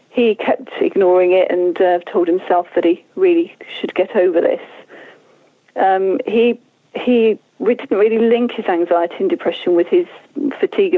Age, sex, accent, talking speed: 40-59, female, British, 155 wpm